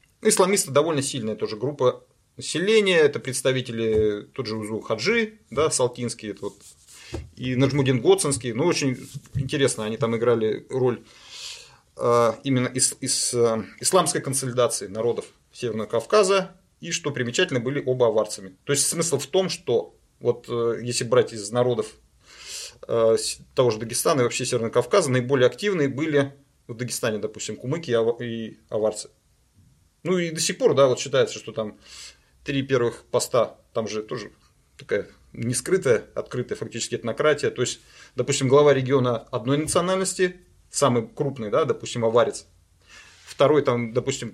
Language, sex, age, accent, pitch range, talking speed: Russian, male, 30-49, native, 120-150 Hz, 135 wpm